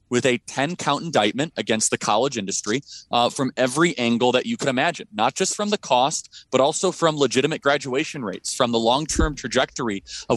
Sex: male